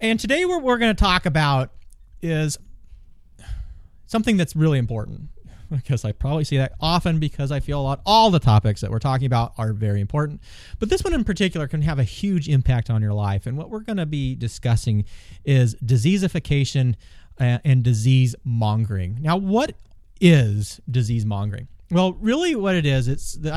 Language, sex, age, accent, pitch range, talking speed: English, male, 30-49, American, 115-165 Hz, 185 wpm